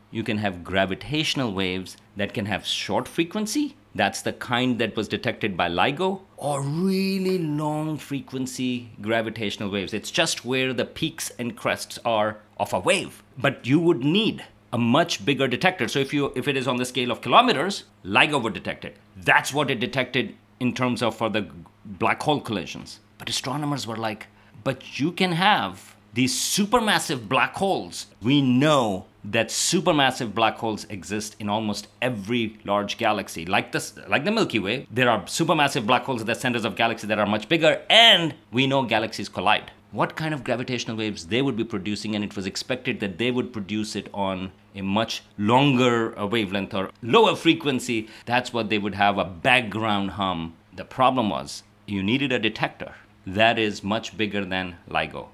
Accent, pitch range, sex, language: Indian, 105-130 Hz, male, English